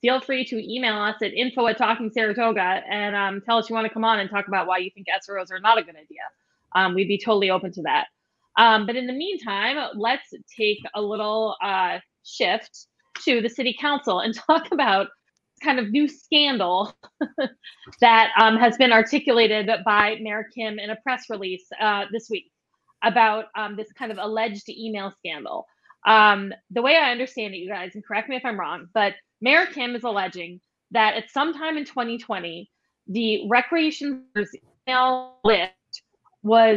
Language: English